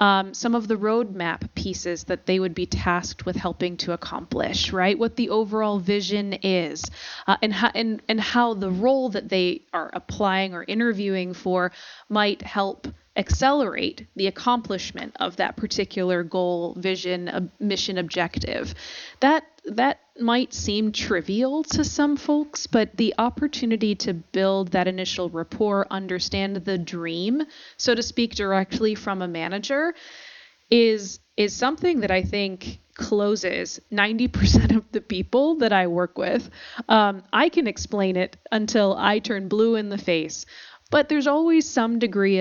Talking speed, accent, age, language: 145 wpm, American, 20-39, English